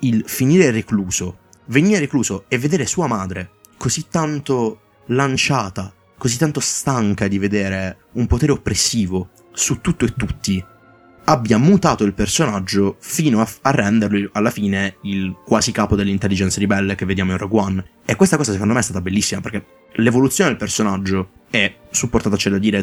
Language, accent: Italian, native